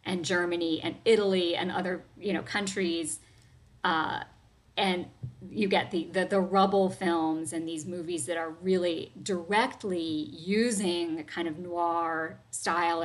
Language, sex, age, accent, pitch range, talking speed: English, female, 40-59, American, 165-195 Hz, 145 wpm